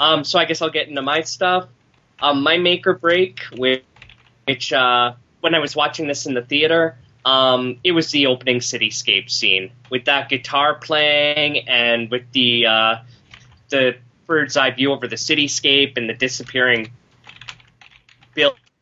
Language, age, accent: English, 20-39, American